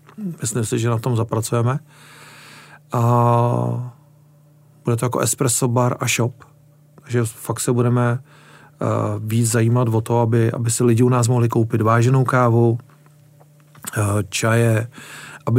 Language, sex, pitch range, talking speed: Czech, male, 115-140 Hz, 130 wpm